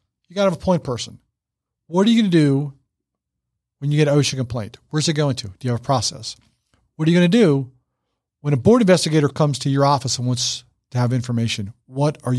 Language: English